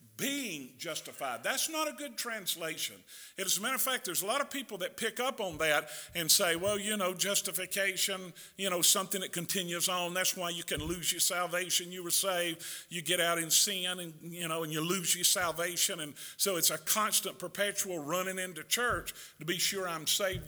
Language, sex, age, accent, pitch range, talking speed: English, male, 50-69, American, 170-200 Hz, 210 wpm